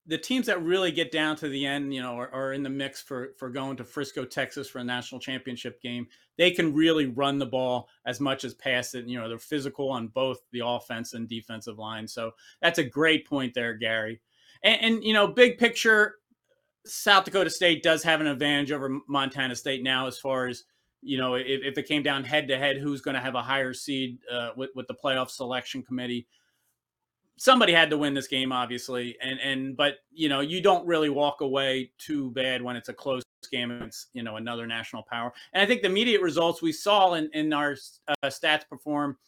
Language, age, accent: English, 30-49, American